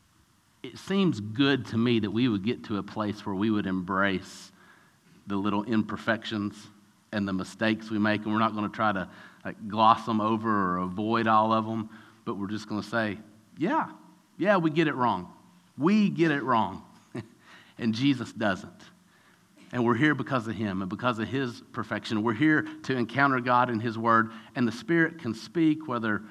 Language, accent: English, American